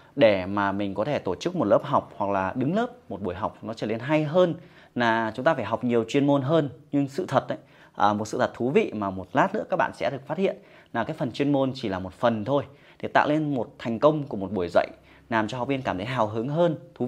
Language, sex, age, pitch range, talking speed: Vietnamese, male, 20-39, 110-145 Hz, 280 wpm